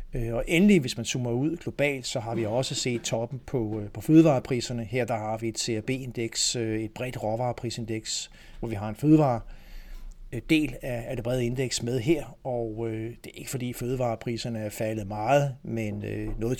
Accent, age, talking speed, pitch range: native, 60-79, 170 wpm, 110-130 Hz